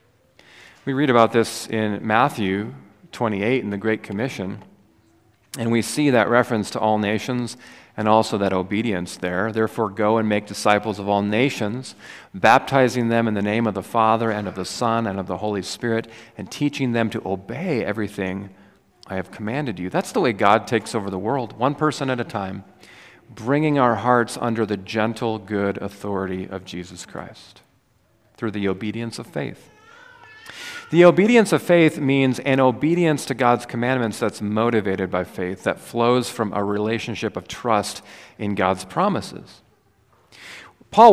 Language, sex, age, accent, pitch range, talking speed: English, male, 40-59, American, 100-130 Hz, 165 wpm